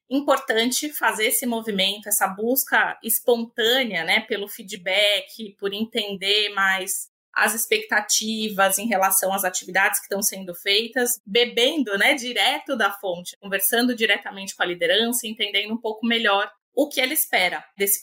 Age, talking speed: 20-39, 140 wpm